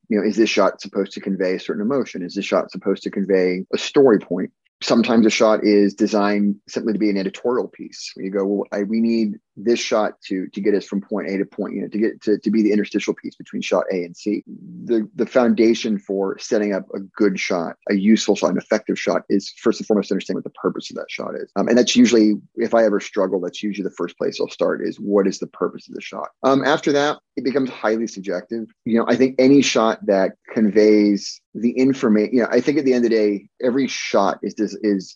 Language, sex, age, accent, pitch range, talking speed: English, male, 30-49, American, 100-115 Hz, 250 wpm